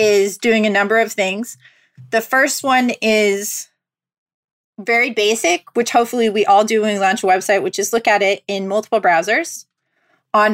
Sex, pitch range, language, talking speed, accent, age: female, 200-245 Hz, English, 175 wpm, American, 30-49